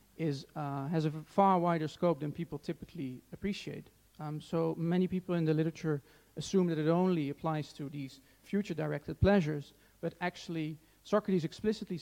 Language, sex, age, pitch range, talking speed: English, male, 40-59, 145-175 Hz, 155 wpm